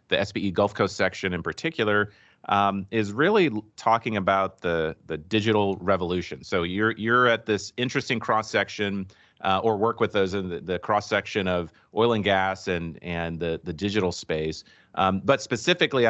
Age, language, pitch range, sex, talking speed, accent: 30-49, English, 90-110 Hz, male, 175 wpm, American